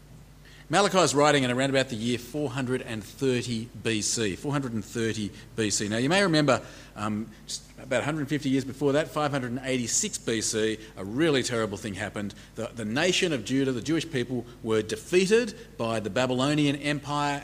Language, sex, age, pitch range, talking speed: English, male, 40-59, 115-150 Hz, 150 wpm